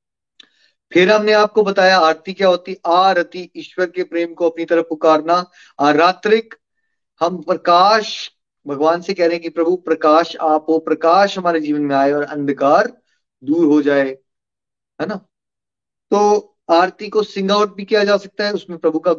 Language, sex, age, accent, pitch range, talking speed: Hindi, male, 30-49, native, 155-195 Hz, 165 wpm